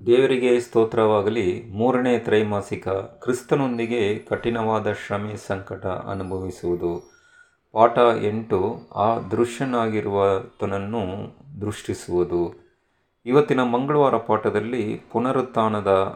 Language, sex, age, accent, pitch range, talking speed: Kannada, male, 30-49, native, 105-120 Hz, 70 wpm